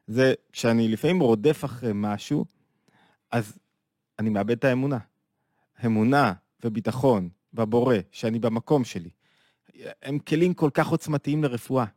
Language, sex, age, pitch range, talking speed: Hebrew, male, 20-39, 120-160 Hz, 115 wpm